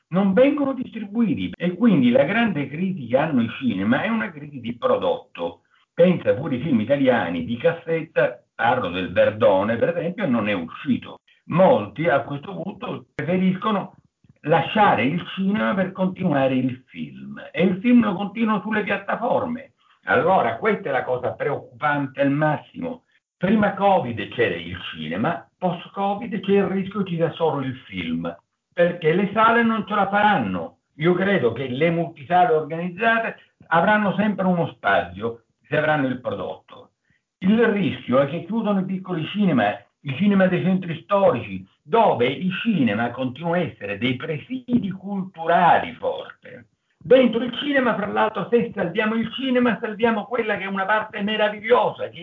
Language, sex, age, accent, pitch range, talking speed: Italian, male, 60-79, native, 165-220 Hz, 155 wpm